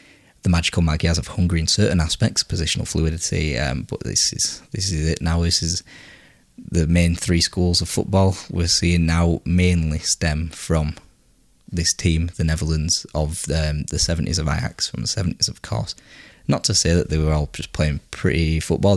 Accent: British